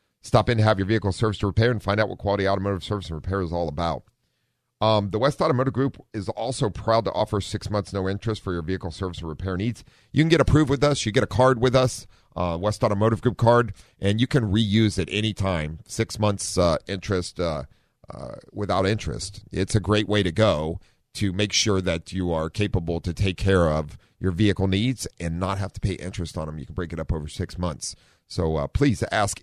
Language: English